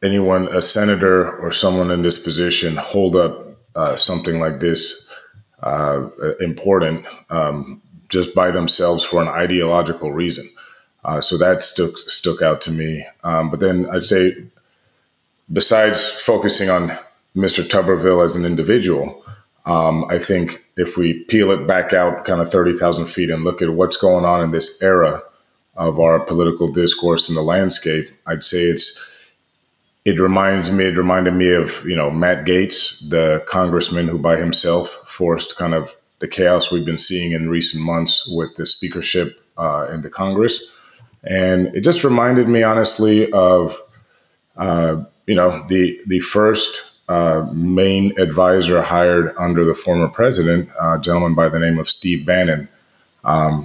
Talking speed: 160 wpm